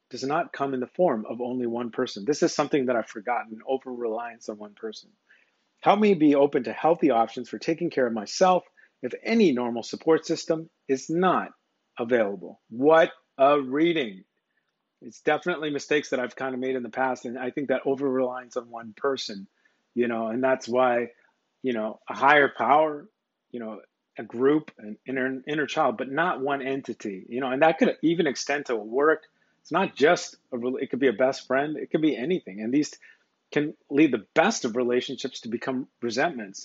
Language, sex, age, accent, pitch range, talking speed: English, male, 30-49, American, 120-150 Hz, 195 wpm